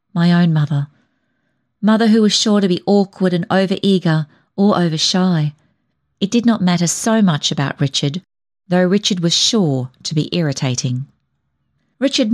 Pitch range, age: 150-200 Hz, 40-59